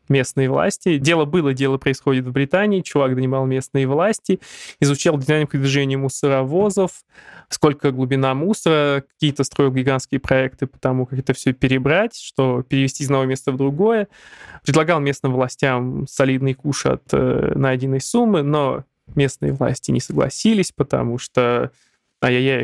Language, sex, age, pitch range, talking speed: Russian, male, 20-39, 130-155 Hz, 140 wpm